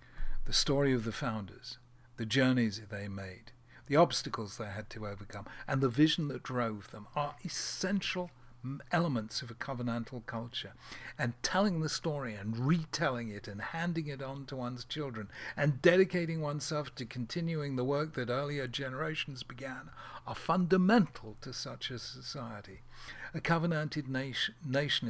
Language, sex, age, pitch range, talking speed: English, male, 60-79, 115-145 Hz, 150 wpm